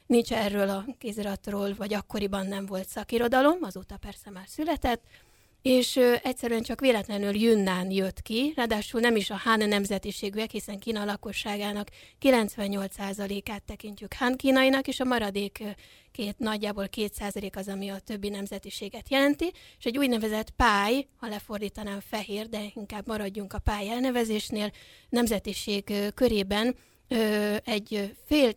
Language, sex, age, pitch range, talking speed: Hungarian, female, 30-49, 205-235 Hz, 130 wpm